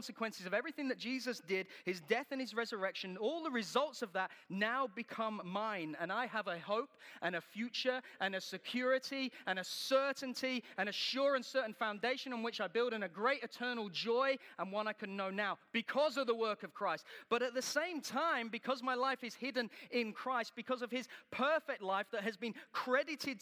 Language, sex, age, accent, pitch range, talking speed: English, male, 30-49, British, 210-270 Hz, 205 wpm